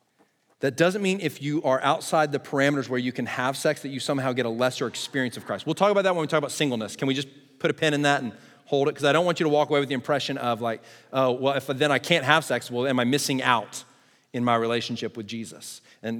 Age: 40-59